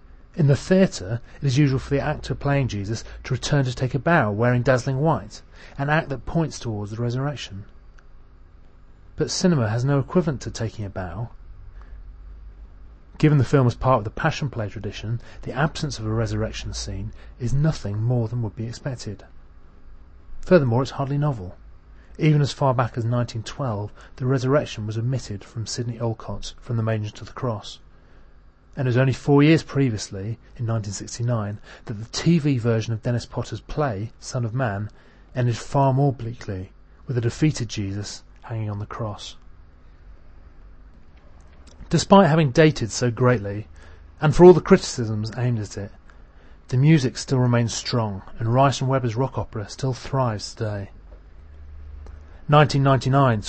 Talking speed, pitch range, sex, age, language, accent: 160 wpm, 95-135 Hz, male, 30-49, English, British